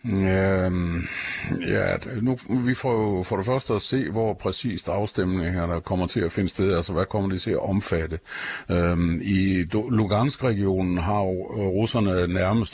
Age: 60-79